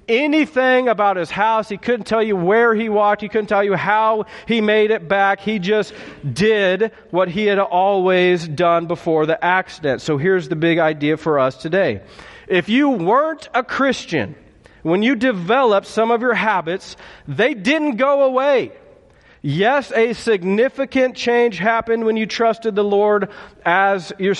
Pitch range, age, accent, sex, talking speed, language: 185-230 Hz, 40-59, American, male, 165 wpm, English